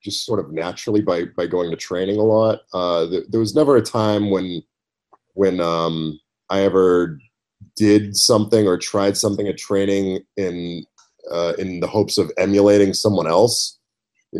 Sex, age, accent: male, 30-49, American